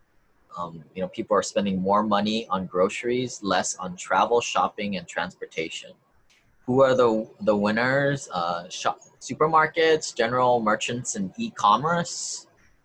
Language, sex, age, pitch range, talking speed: English, male, 20-39, 95-140 Hz, 135 wpm